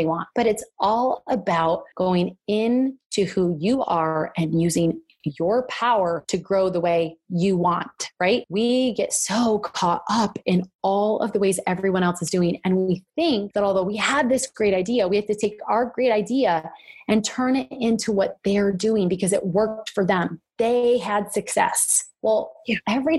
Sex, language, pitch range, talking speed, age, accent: female, English, 190-240 Hz, 180 wpm, 30-49, American